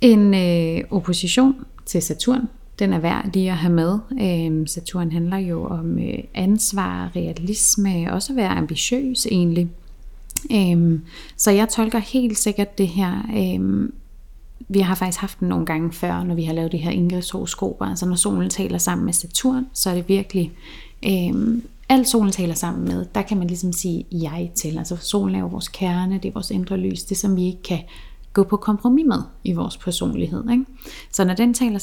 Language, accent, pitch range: Danish, native, 175-220 Hz